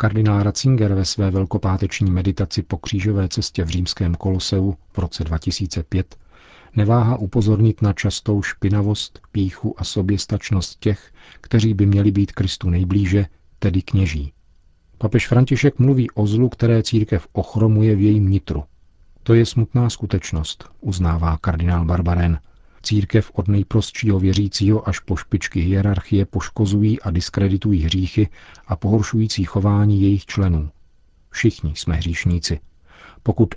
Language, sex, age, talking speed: Czech, male, 40-59, 125 wpm